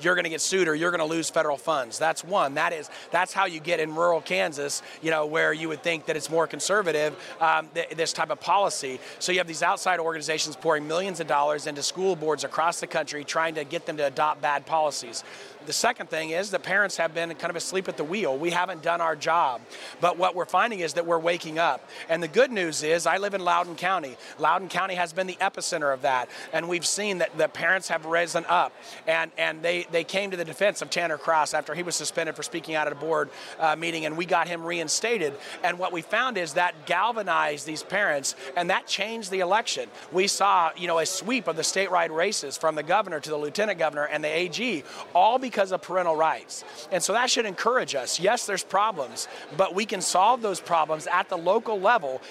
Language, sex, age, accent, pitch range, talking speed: English, male, 30-49, American, 155-185 Hz, 230 wpm